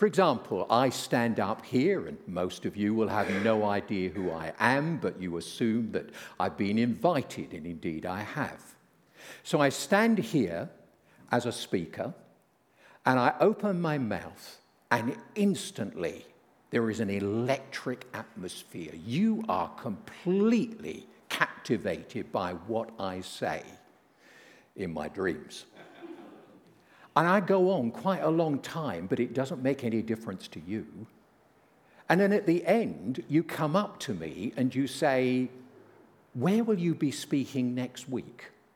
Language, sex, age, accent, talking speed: English, male, 60-79, British, 145 wpm